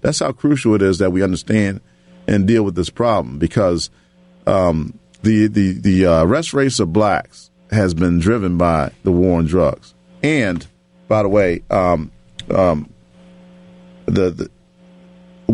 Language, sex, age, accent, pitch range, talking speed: English, male, 40-59, American, 90-130 Hz, 145 wpm